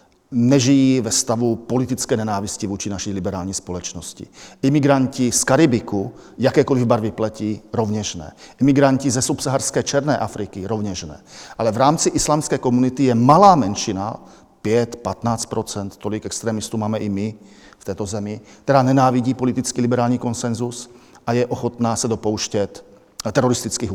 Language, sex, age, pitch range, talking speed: Slovak, male, 40-59, 110-135 Hz, 130 wpm